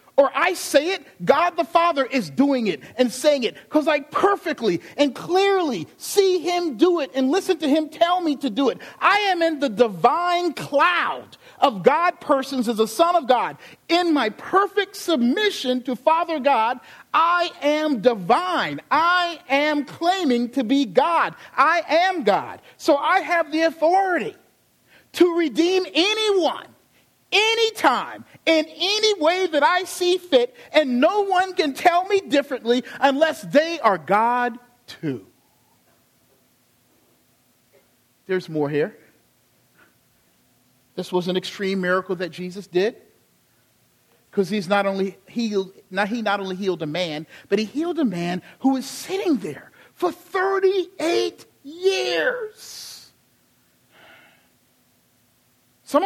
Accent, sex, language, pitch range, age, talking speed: American, male, English, 245-350 Hz, 40-59, 135 wpm